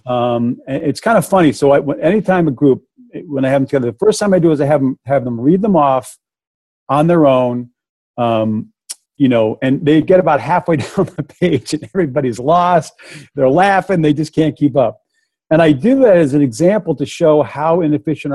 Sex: male